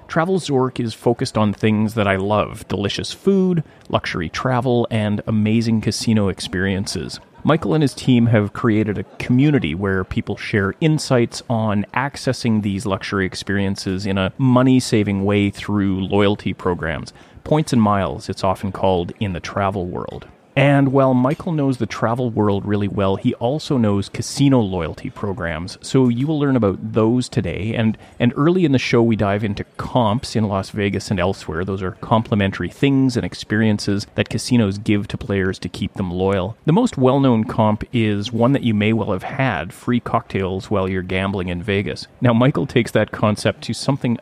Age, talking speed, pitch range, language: 30-49, 175 wpm, 100-125 Hz, English